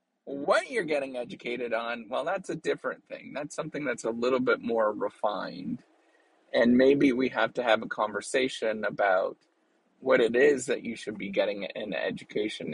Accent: American